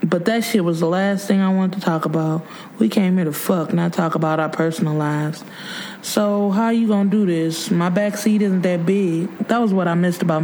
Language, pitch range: English, 175-210 Hz